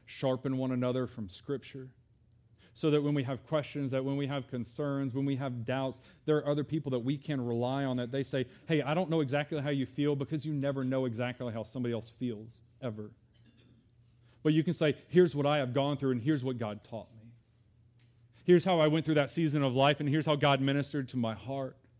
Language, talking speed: English, 225 wpm